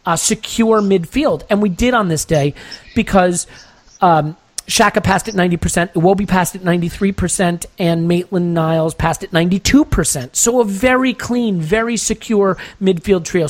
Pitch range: 150-195 Hz